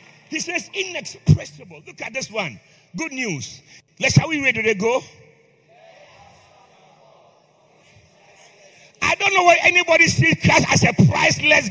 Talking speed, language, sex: 130 wpm, English, male